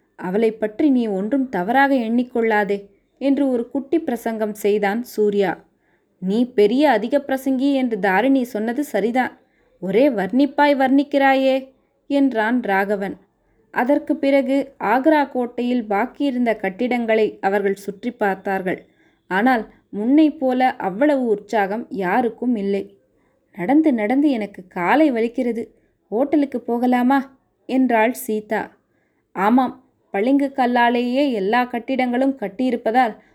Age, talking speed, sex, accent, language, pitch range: 20-39, 95 wpm, female, native, Tamil, 220-275 Hz